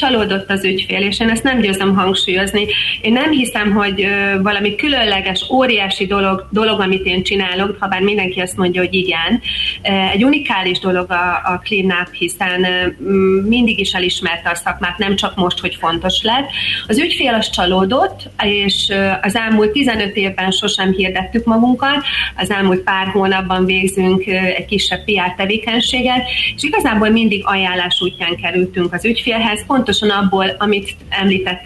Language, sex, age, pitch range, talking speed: Hungarian, female, 30-49, 185-210 Hz, 150 wpm